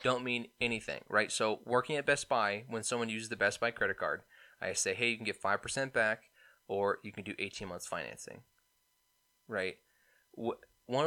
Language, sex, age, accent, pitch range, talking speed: English, male, 20-39, American, 105-130 Hz, 185 wpm